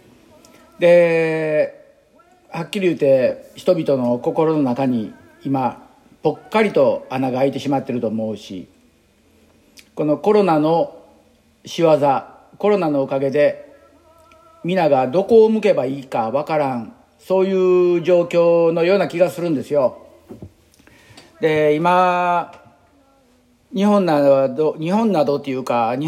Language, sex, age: Japanese, male, 50-69